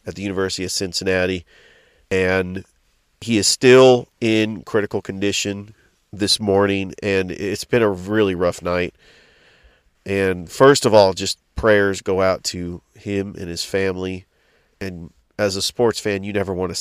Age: 40-59